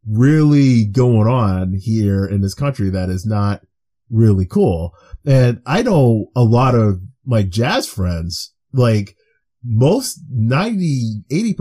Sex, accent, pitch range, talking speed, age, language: male, American, 110-140 Hz, 125 wpm, 30-49, English